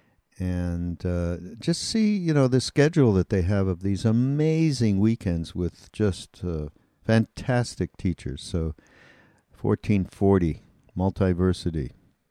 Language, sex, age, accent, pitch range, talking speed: English, male, 60-79, American, 90-105 Hz, 115 wpm